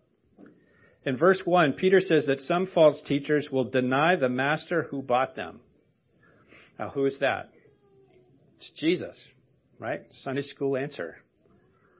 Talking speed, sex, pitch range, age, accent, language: 130 wpm, male, 135-180 Hz, 50-69, American, English